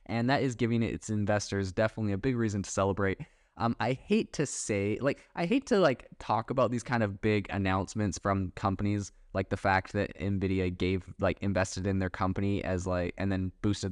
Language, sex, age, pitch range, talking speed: English, male, 10-29, 95-110 Hz, 205 wpm